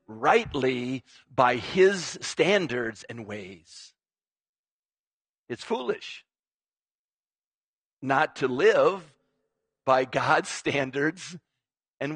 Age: 50-69